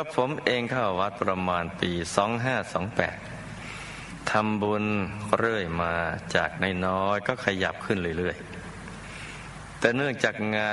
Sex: male